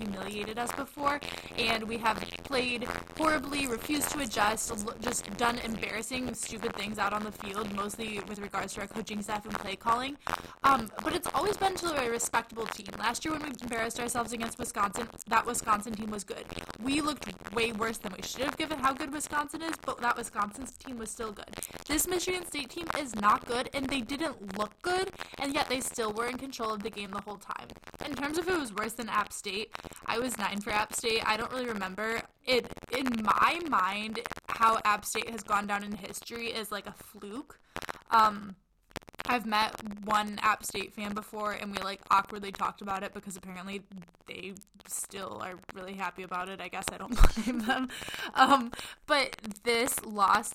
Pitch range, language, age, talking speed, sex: 210-255 Hz, English, 10-29, 195 wpm, female